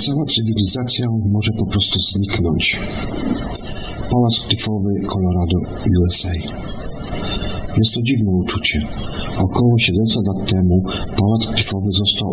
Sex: male